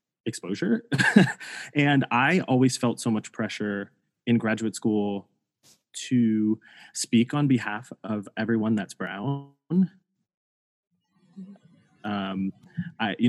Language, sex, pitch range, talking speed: English, male, 110-145 Hz, 100 wpm